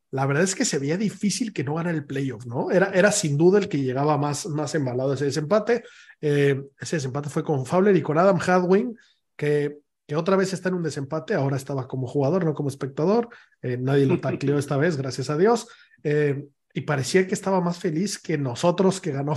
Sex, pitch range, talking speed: male, 140-185 Hz, 215 wpm